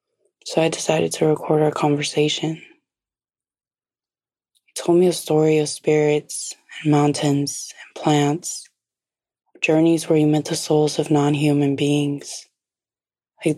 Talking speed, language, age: 125 wpm, English, 20-39